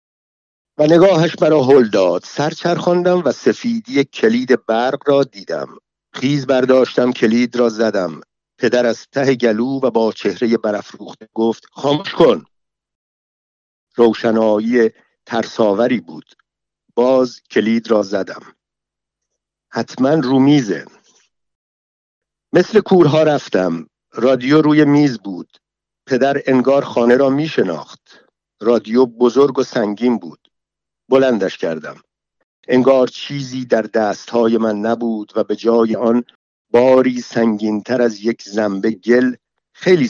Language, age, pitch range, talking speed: Persian, 50-69, 110-140 Hz, 110 wpm